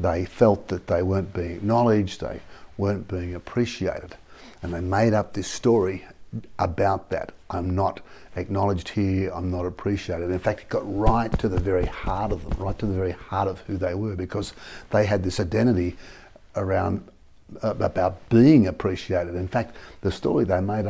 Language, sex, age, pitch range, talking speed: English, male, 50-69, 90-110 Hz, 175 wpm